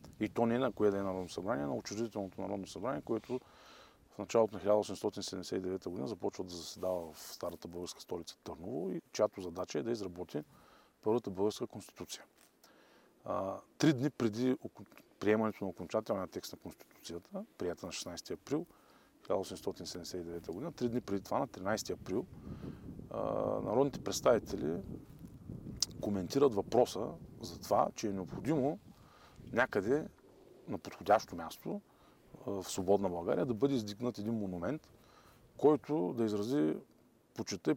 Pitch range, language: 95-125 Hz, Bulgarian